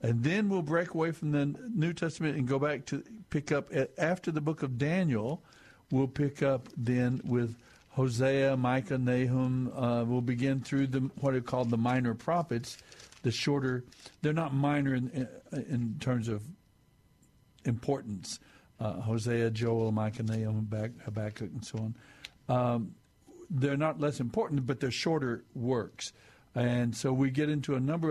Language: English